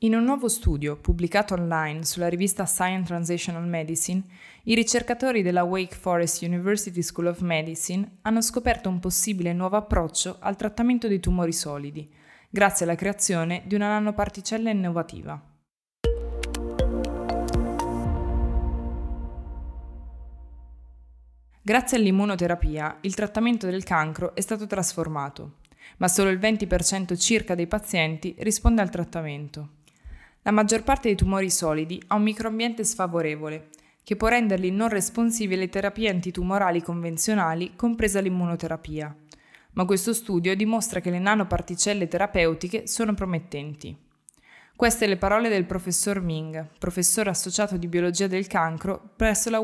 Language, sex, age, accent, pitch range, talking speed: Italian, female, 20-39, native, 160-210 Hz, 125 wpm